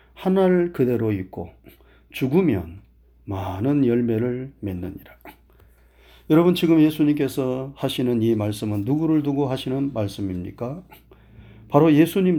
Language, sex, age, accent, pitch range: Korean, male, 40-59, native, 115-165 Hz